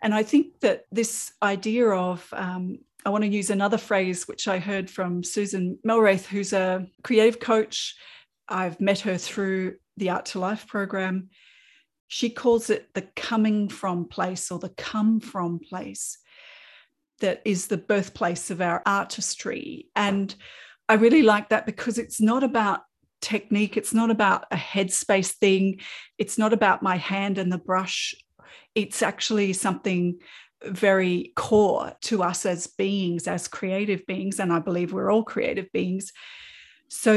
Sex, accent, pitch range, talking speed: female, Australian, 190-220 Hz, 155 wpm